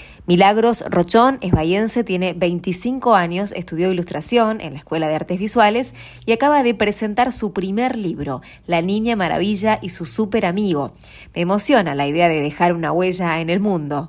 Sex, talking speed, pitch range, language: female, 170 wpm, 170-220 Hz, English